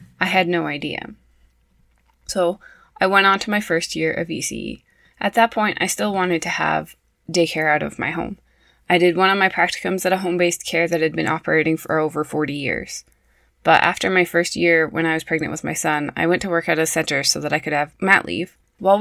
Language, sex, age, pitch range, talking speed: English, female, 20-39, 155-185 Hz, 225 wpm